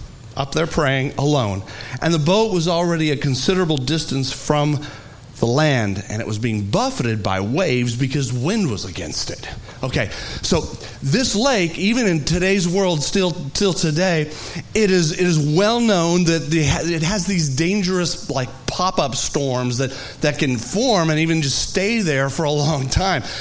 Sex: male